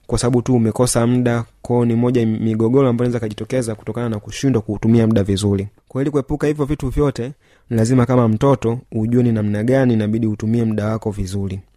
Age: 30-49